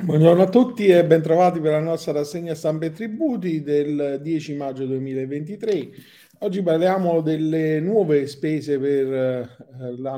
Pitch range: 125-155 Hz